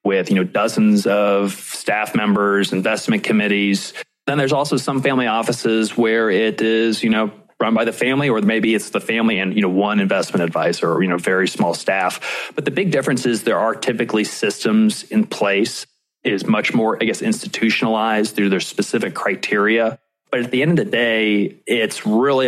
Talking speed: 190 wpm